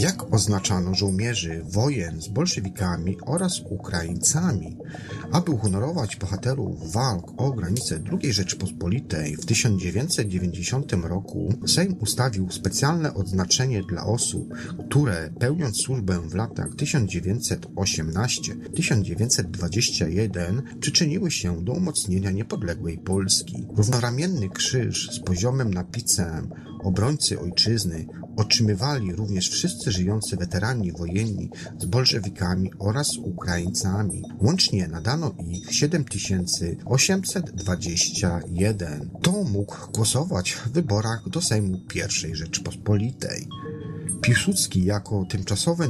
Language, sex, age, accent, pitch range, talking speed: Polish, male, 40-59, native, 90-135 Hz, 90 wpm